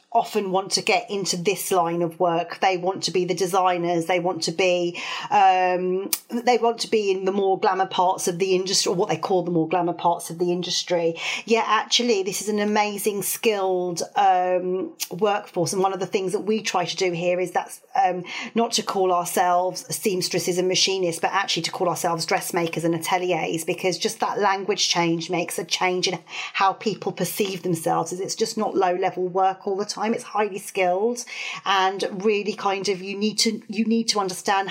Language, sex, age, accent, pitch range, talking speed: English, female, 40-59, British, 175-210 Hz, 200 wpm